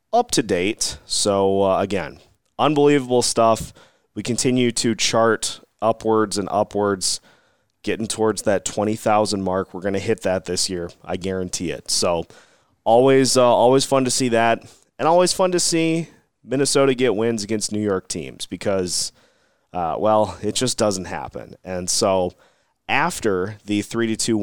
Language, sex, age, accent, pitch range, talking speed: English, male, 30-49, American, 100-120 Hz, 150 wpm